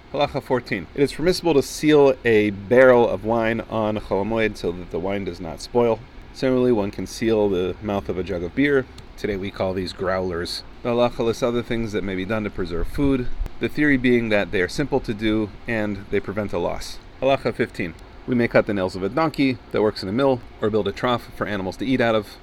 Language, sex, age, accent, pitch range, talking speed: English, male, 30-49, American, 100-125 Hz, 230 wpm